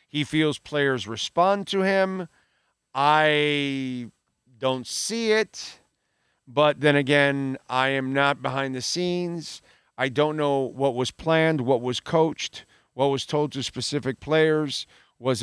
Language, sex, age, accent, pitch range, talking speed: English, male, 50-69, American, 130-160 Hz, 135 wpm